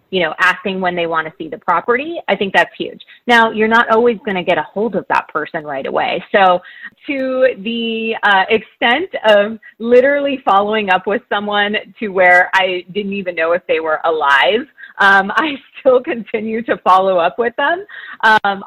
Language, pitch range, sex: English, 170-225 Hz, female